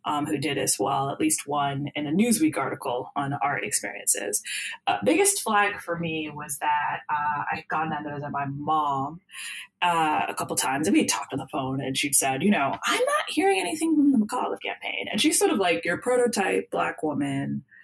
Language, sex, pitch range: English, female, 145-230 Hz